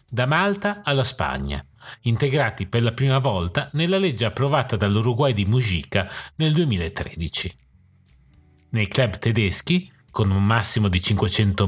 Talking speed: 130 wpm